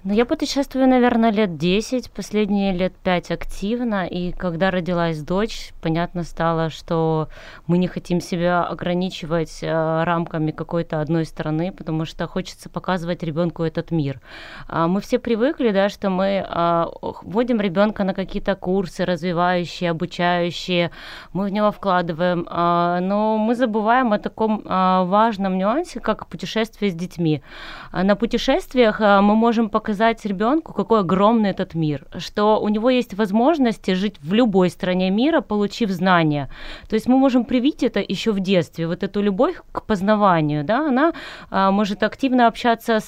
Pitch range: 175-230 Hz